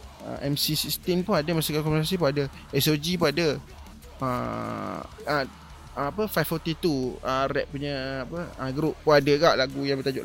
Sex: male